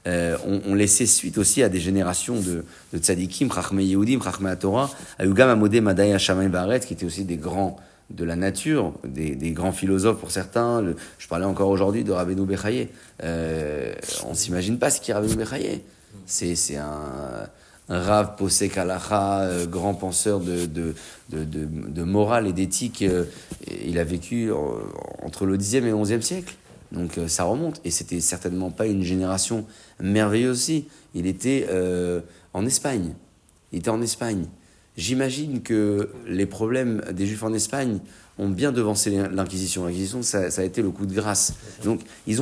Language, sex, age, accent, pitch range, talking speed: French, male, 30-49, French, 90-115 Hz, 170 wpm